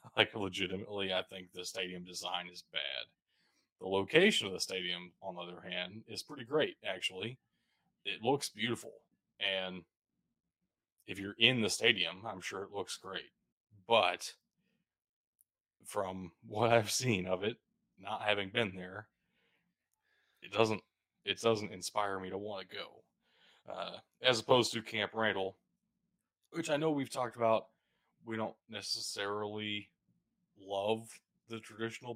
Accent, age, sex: American, 20-39, male